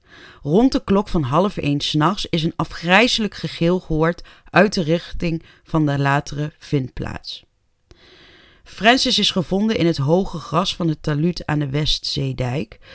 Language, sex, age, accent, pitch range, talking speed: Dutch, female, 30-49, Dutch, 150-185 Hz, 150 wpm